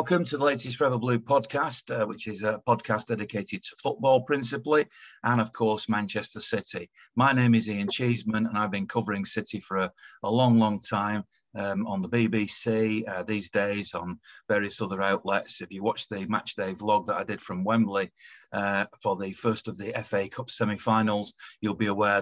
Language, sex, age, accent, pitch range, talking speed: English, male, 40-59, British, 100-120 Hz, 190 wpm